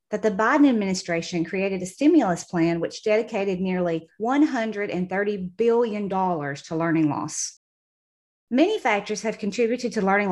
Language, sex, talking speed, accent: English, female, 130 wpm, American